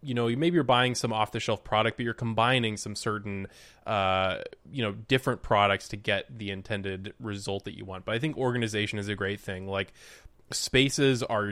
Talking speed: 195 wpm